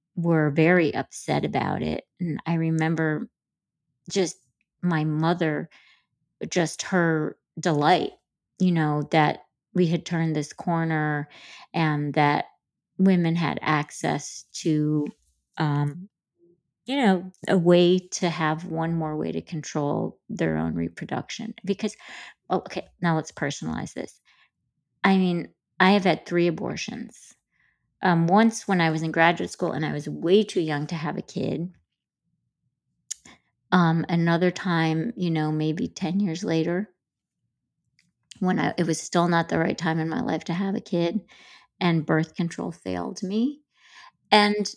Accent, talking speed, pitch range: American, 140 wpm, 155-185 Hz